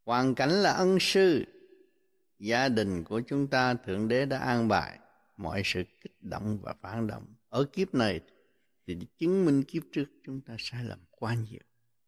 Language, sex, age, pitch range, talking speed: Vietnamese, male, 60-79, 110-150 Hz, 180 wpm